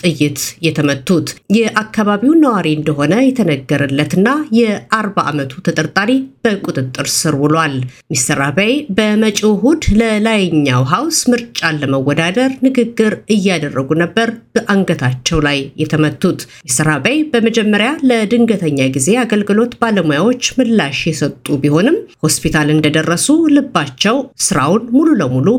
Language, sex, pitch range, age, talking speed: Amharic, female, 145-235 Hz, 50-69, 90 wpm